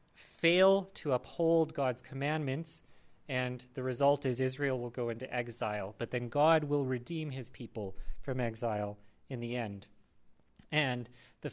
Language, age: English, 30-49